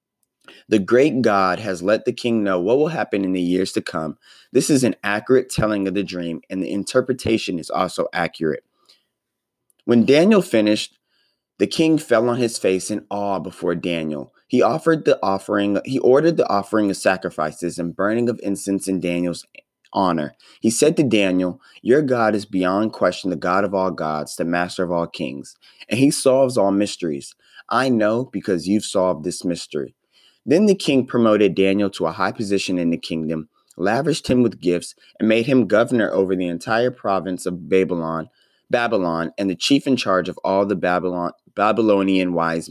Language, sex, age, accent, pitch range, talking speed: English, male, 30-49, American, 90-120 Hz, 175 wpm